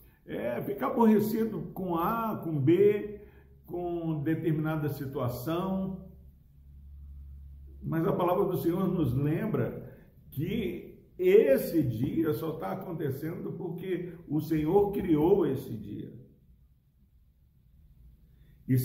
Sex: male